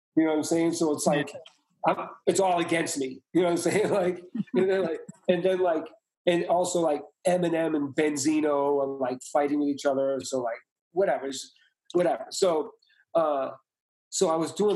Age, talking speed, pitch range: 40-59, 190 wpm, 130-170 Hz